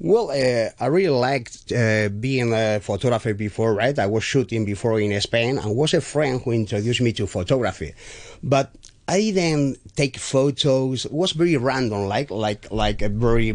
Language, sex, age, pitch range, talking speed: English, male, 30-49, 110-140 Hz, 175 wpm